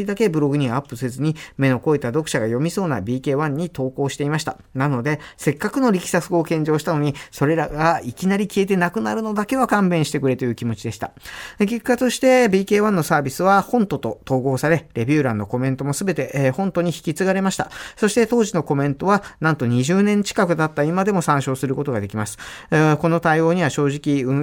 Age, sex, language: 40-59, male, Japanese